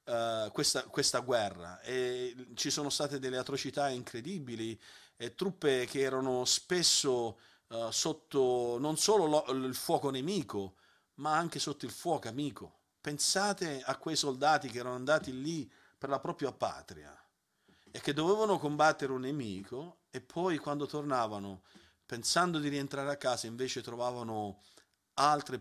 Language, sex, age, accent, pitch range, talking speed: Italian, male, 40-59, native, 125-160 Hz, 135 wpm